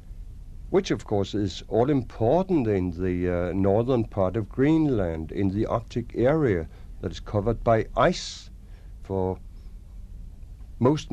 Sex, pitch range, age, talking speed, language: male, 90-120 Hz, 60-79, 125 wpm, English